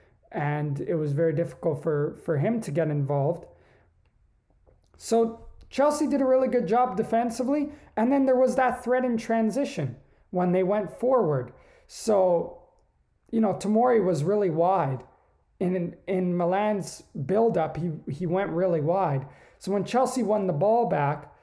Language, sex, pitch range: English, male, 160-205 Hz